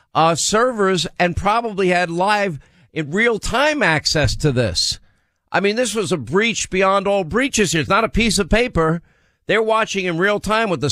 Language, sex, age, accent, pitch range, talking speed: English, male, 50-69, American, 140-180 Hz, 190 wpm